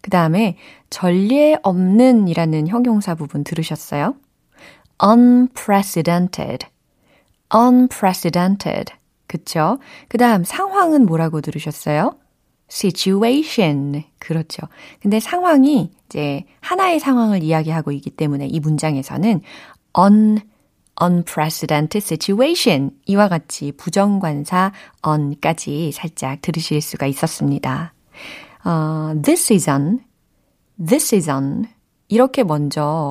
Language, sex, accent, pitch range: Korean, female, native, 155-230 Hz